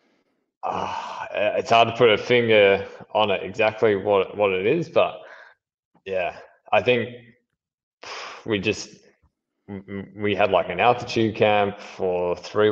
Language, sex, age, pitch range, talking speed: English, male, 20-39, 90-120 Hz, 125 wpm